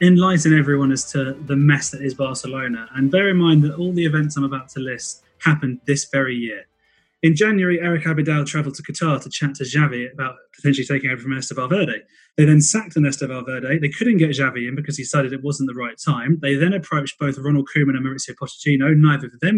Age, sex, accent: 20-39, male, British